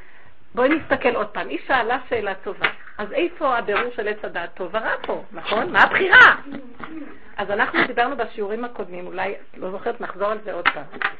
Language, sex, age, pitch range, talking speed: Hebrew, female, 50-69, 215-280 Hz, 175 wpm